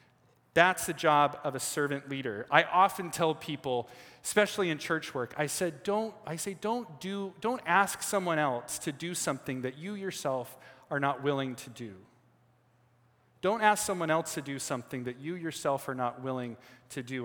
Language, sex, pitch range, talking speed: English, male, 130-165 Hz, 180 wpm